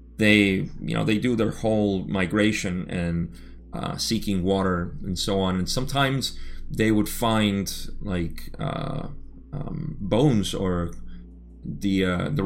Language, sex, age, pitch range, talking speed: English, male, 30-49, 90-110 Hz, 135 wpm